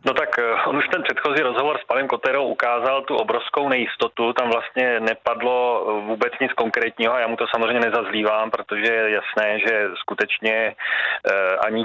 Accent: native